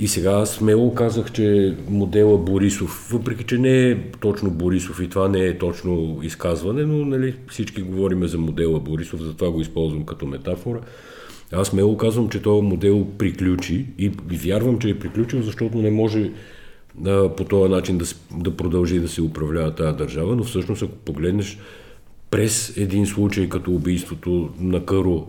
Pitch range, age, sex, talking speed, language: 90-115 Hz, 50-69, male, 165 wpm, Bulgarian